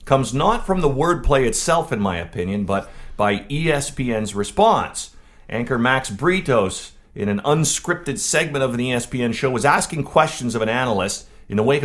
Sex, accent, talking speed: male, American, 165 wpm